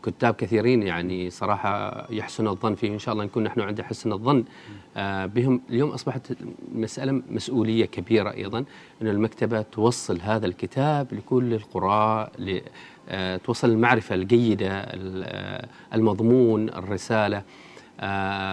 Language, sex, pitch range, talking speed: Arabic, male, 105-125 Hz, 110 wpm